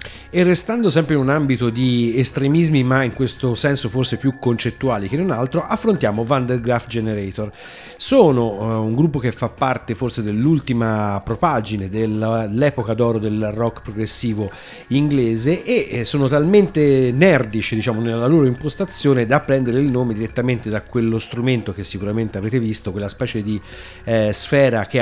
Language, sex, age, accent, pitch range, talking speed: Italian, male, 40-59, native, 110-135 Hz, 155 wpm